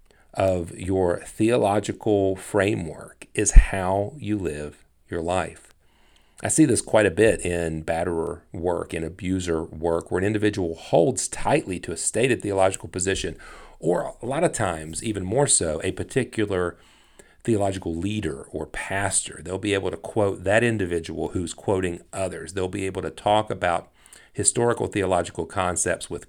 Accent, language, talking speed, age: American, English, 150 wpm, 40-59